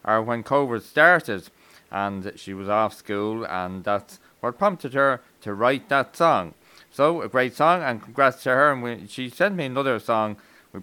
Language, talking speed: English, 190 wpm